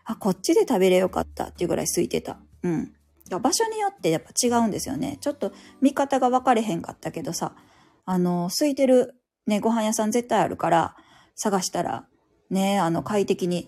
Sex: female